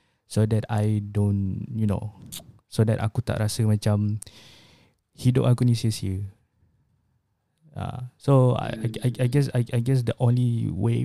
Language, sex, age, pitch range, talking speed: Malay, male, 20-39, 105-125 Hz, 155 wpm